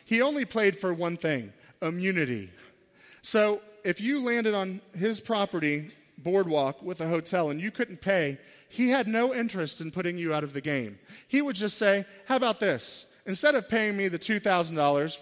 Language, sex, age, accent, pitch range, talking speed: English, male, 40-59, American, 170-225 Hz, 180 wpm